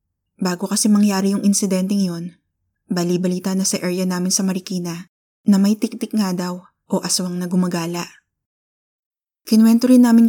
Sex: female